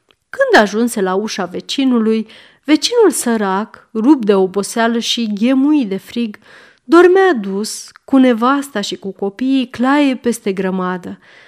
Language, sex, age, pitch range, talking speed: Romanian, female, 30-49, 205-270 Hz, 125 wpm